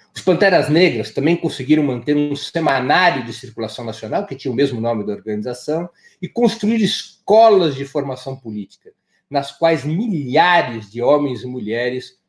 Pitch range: 130-195 Hz